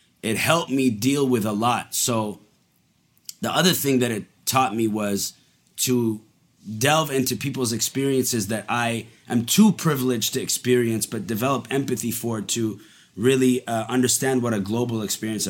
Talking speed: 155 wpm